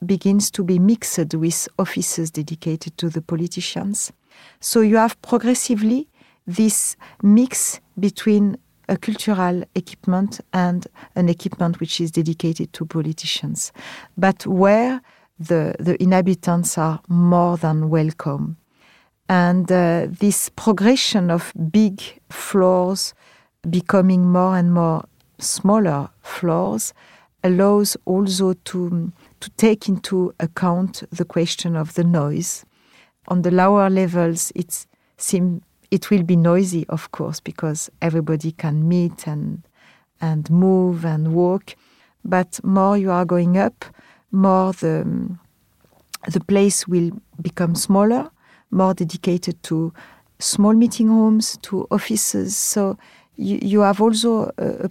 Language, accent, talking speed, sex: French, French, 120 wpm, female